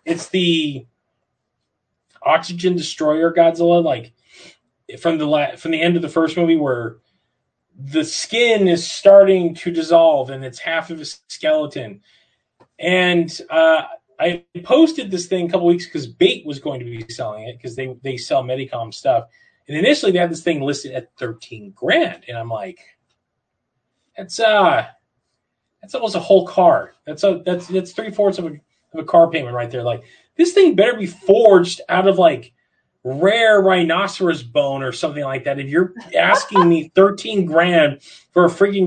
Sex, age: male, 30-49